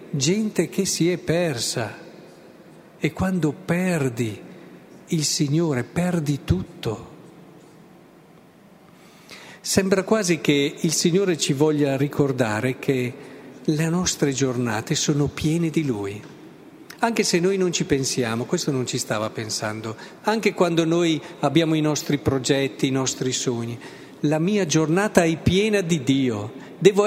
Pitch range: 145-200 Hz